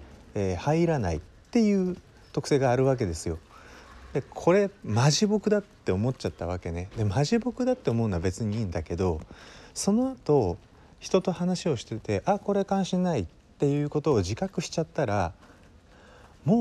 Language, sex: Japanese, male